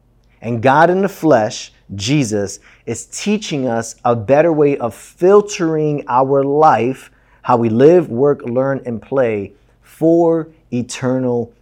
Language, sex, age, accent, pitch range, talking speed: English, male, 30-49, American, 110-145 Hz, 130 wpm